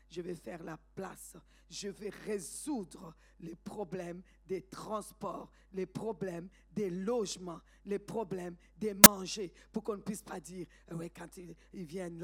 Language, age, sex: French, 50-69, female